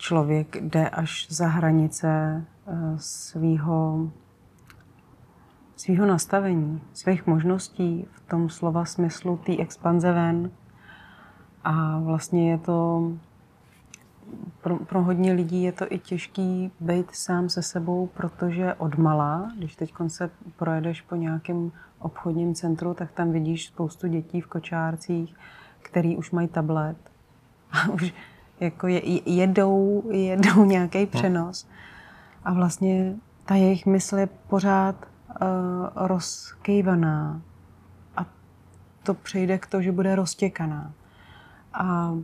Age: 30-49